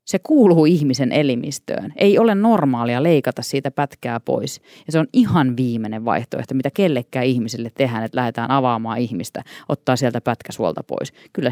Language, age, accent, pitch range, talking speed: Finnish, 30-49, native, 125-150 Hz, 155 wpm